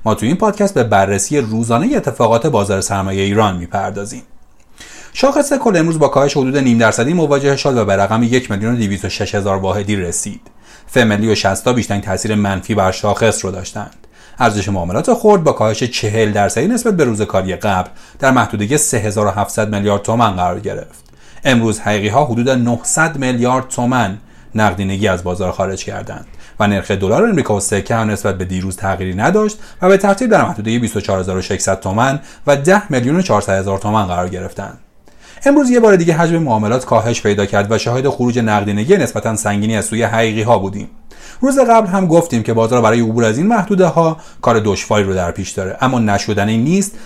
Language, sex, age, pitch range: Persian, male, 40-59, 100-140 Hz